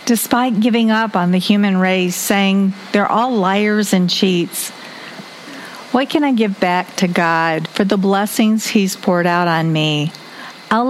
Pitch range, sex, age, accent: 175-220 Hz, female, 50-69, American